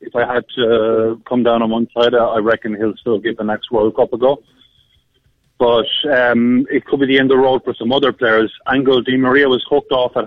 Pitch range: 115-130 Hz